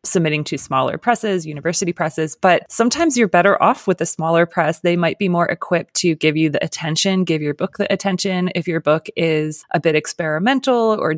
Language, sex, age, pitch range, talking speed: English, female, 20-39, 160-190 Hz, 205 wpm